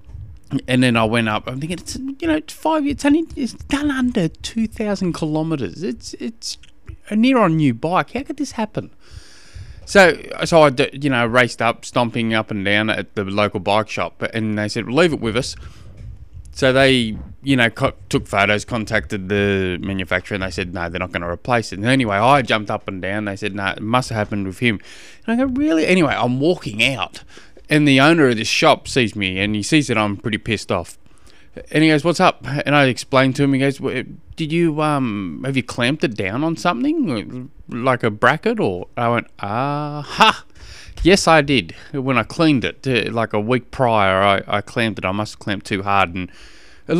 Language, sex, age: English, male, 20-39